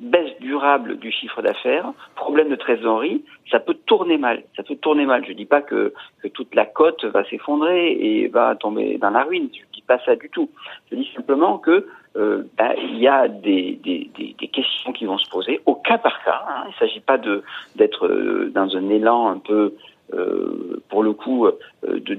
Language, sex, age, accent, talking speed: French, male, 50-69, French, 210 wpm